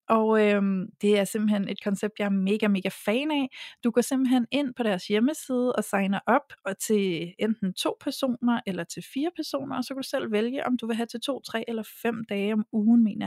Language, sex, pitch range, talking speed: Danish, female, 205-255 Hz, 230 wpm